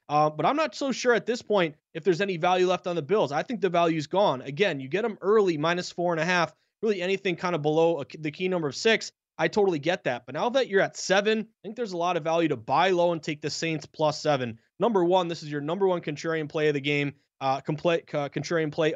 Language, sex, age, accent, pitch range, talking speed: English, male, 20-39, American, 155-195 Hz, 265 wpm